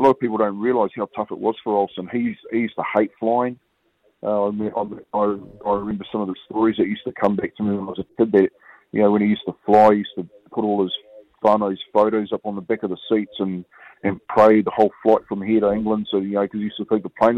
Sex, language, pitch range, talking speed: male, English, 100-110 Hz, 285 wpm